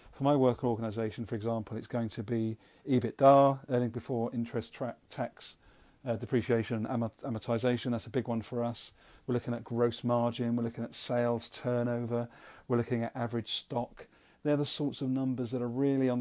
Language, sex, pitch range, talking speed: English, male, 115-130 Hz, 185 wpm